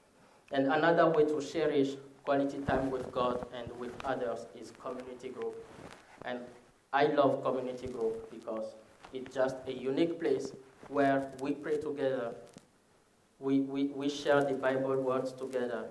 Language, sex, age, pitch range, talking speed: English, male, 20-39, 125-140 Hz, 140 wpm